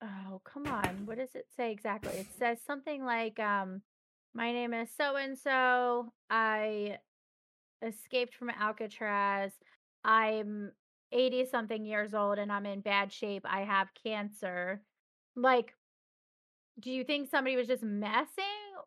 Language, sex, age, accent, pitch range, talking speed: English, female, 30-49, American, 215-290 Hz, 130 wpm